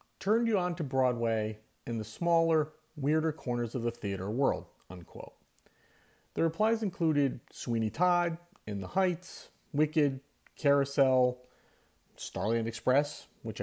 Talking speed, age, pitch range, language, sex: 125 wpm, 40-59, 110-155 Hz, English, male